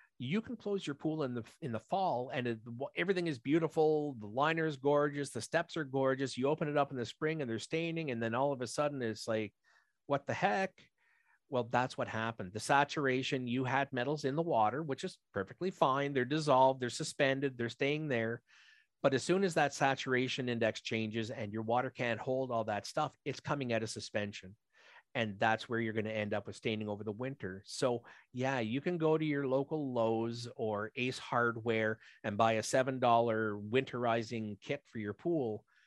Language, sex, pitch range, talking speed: English, male, 110-140 Hz, 205 wpm